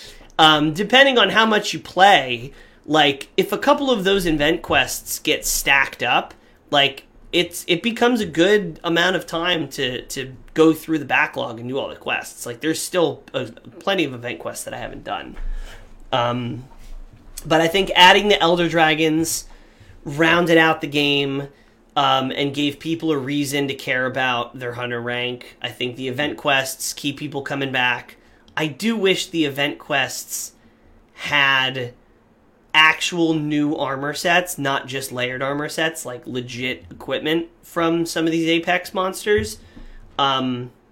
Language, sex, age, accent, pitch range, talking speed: English, male, 30-49, American, 130-170 Hz, 160 wpm